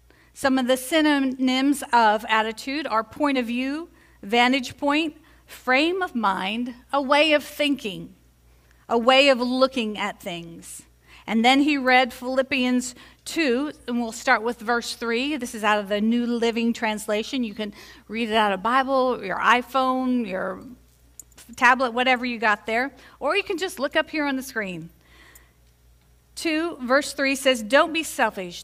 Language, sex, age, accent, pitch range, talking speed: English, female, 40-59, American, 210-270 Hz, 160 wpm